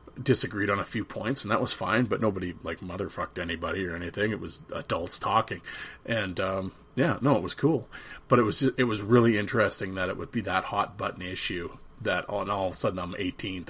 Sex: male